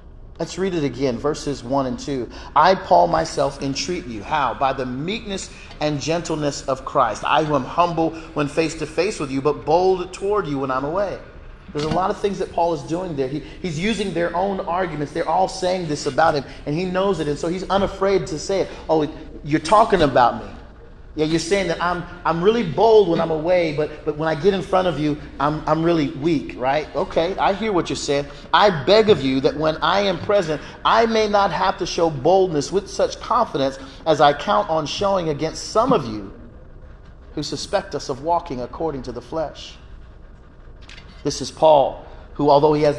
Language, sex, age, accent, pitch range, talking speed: English, male, 30-49, American, 145-185 Hz, 210 wpm